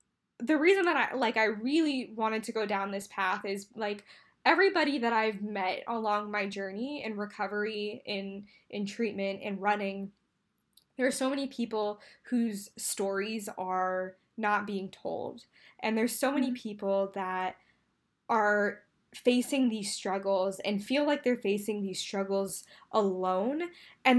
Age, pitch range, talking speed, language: 10-29, 200-240 Hz, 145 wpm, English